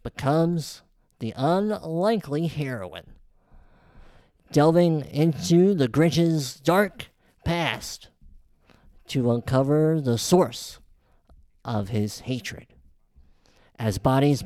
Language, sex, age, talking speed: English, male, 50-69, 80 wpm